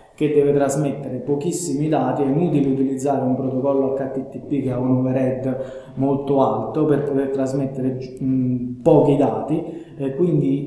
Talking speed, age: 130 wpm, 20-39